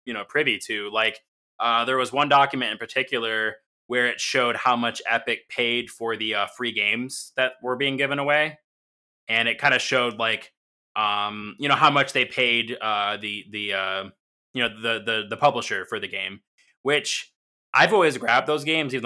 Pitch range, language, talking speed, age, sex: 110-130 Hz, English, 195 wpm, 20-39, male